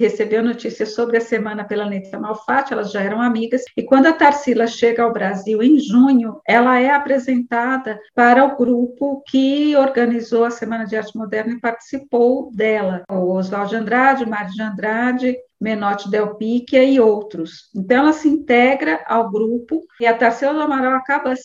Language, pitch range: Portuguese, 220-255 Hz